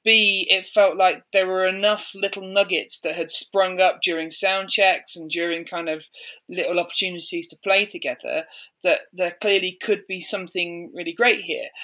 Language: English